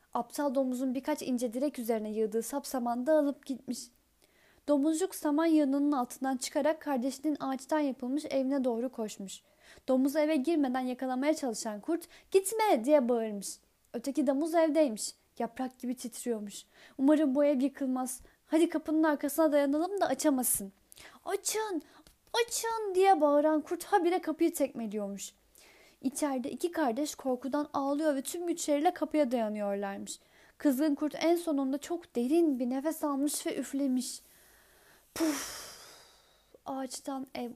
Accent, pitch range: native, 245-310 Hz